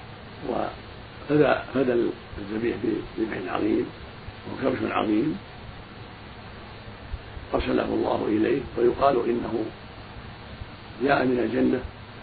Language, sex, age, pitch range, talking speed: Arabic, male, 50-69, 105-125 Hz, 75 wpm